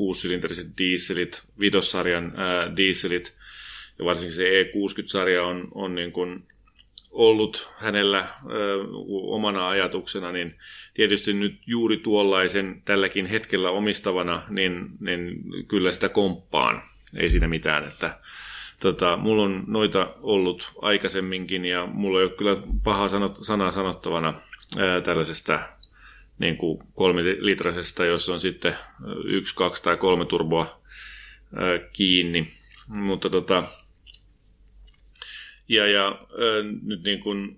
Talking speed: 110 wpm